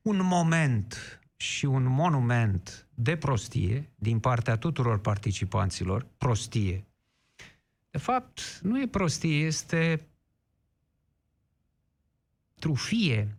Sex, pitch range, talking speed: male, 110-150 Hz, 85 wpm